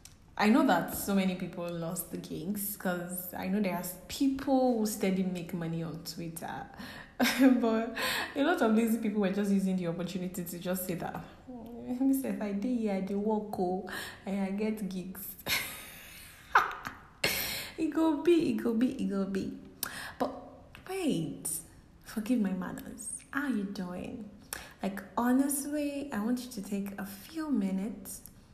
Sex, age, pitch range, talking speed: female, 10-29, 185-225 Hz, 155 wpm